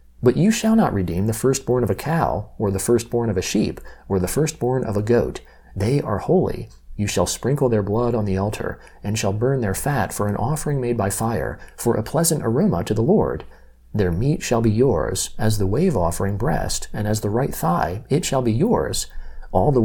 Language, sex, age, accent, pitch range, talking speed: English, male, 40-59, American, 100-130 Hz, 215 wpm